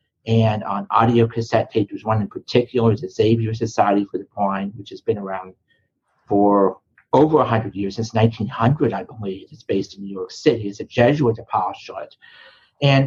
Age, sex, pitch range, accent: 50-69, male, 110-125 Hz, American